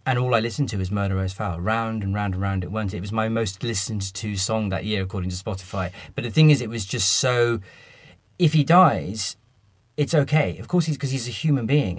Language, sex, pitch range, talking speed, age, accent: English, male, 105-140 Hz, 240 wpm, 30-49, British